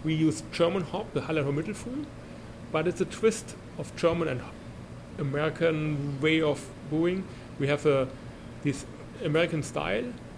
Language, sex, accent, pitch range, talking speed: English, male, German, 130-160 Hz, 140 wpm